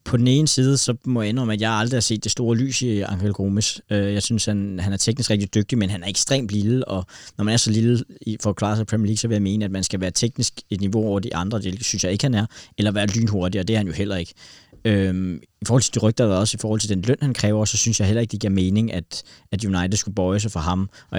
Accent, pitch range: native, 95-110 Hz